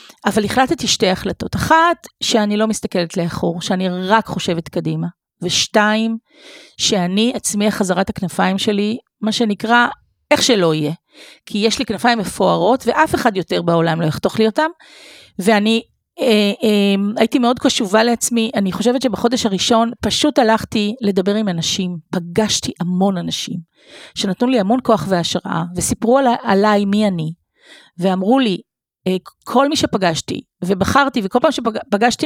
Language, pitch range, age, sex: Hebrew, 190-235 Hz, 40-59, female